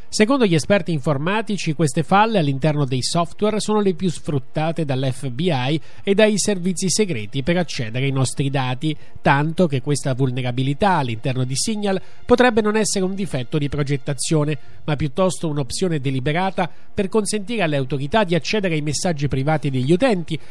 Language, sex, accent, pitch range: Italian, male, native, 145-200 Hz